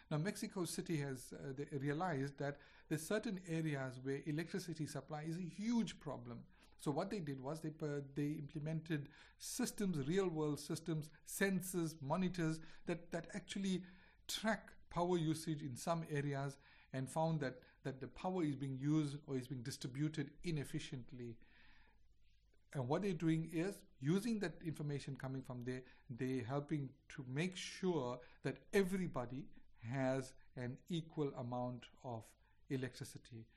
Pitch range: 130-160 Hz